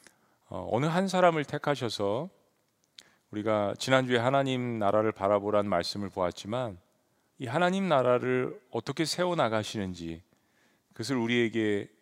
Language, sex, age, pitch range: Korean, male, 40-59, 105-135 Hz